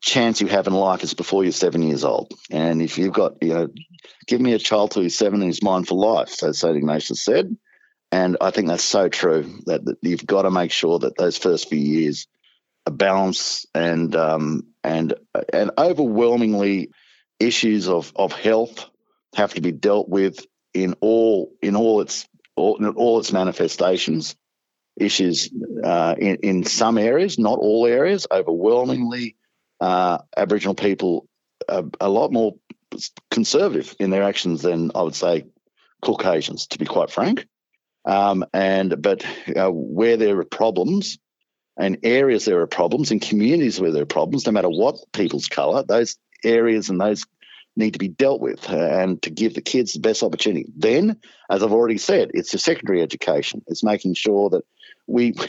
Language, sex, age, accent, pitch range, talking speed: English, male, 50-69, Australian, 90-115 Hz, 175 wpm